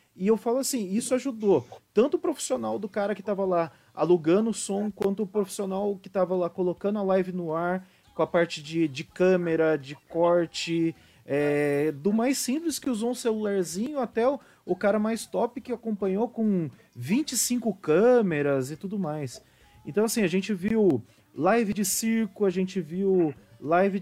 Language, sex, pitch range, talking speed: Portuguese, male, 180-235 Hz, 170 wpm